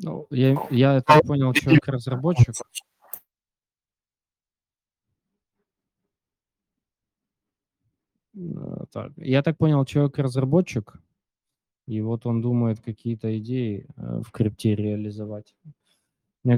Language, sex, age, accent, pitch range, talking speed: Russian, male, 20-39, native, 105-125 Hz, 80 wpm